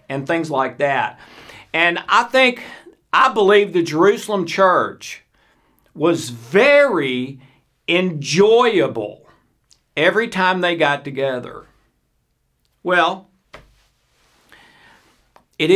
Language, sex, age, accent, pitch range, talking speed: English, male, 50-69, American, 150-200 Hz, 85 wpm